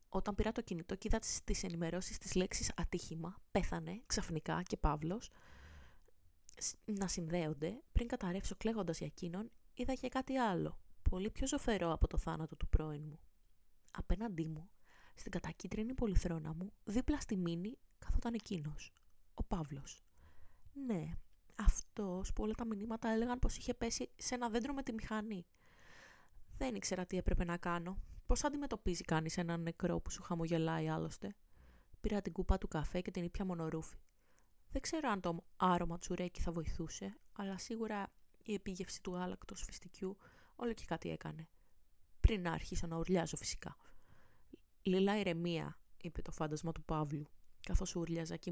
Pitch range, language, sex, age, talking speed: 160-215 Hz, Greek, female, 20-39, 155 wpm